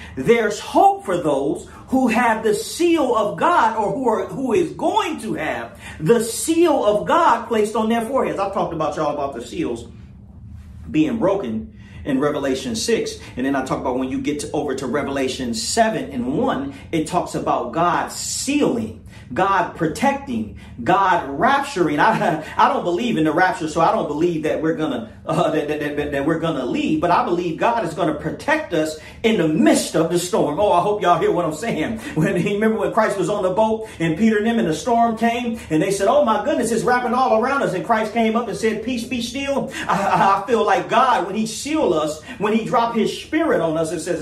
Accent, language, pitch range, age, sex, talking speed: American, English, 160-235 Hz, 40-59, male, 220 wpm